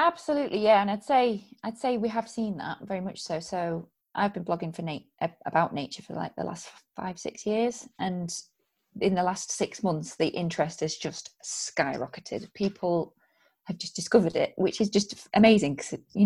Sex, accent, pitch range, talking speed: female, British, 170-220 Hz, 190 wpm